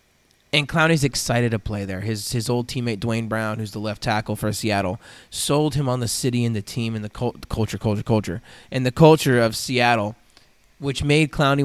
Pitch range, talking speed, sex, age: 110-130 Hz, 205 wpm, male, 20-39